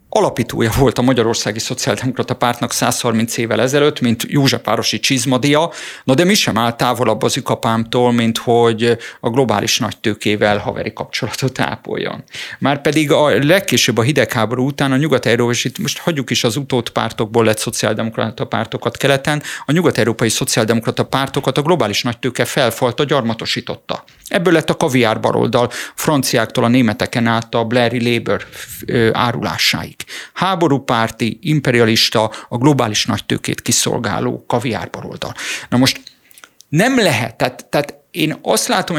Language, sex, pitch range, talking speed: Hungarian, male, 115-140 Hz, 135 wpm